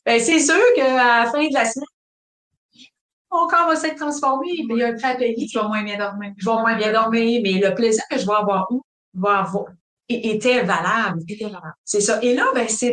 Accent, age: Canadian, 30-49